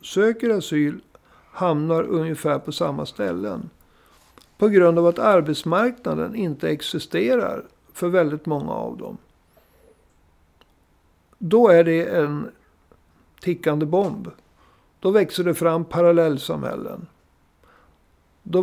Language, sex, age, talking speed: Swedish, male, 60-79, 100 wpm